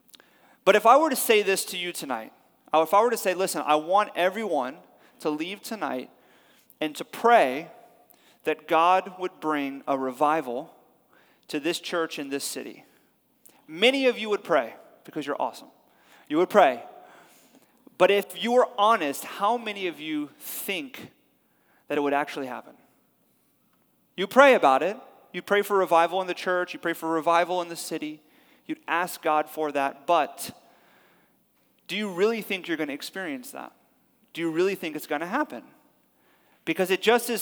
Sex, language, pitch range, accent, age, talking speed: male, English, 155-210 Hz, American, 30-49, 175 wpm